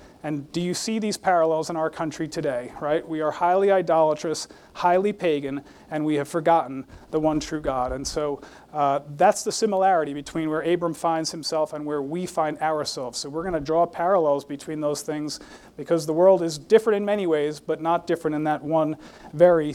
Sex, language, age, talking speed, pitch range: male, English, 40-59, 195 wpm, 155-185 Hz